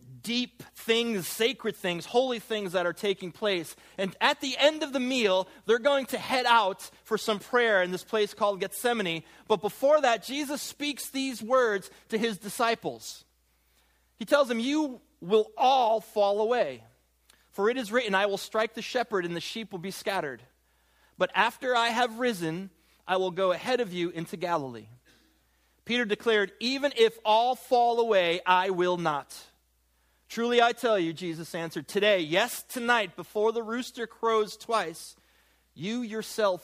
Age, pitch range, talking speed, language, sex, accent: 30-49, 170-235 Hz, 165 wpm, English, male, American